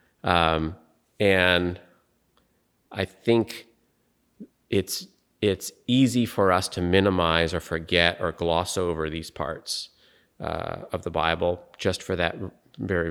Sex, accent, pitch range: male, American, 80-95 Hz